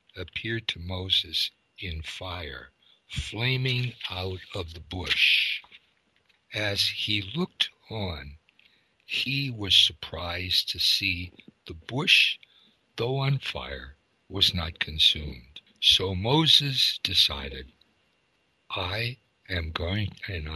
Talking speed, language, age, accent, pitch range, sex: 100 wpm, English, 60-79, American, 80-105 Hz, male